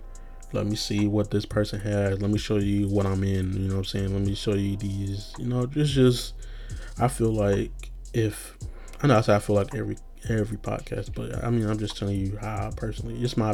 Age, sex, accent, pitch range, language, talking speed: 20-39, male, American, 100-115 Hz, English, 240 wpm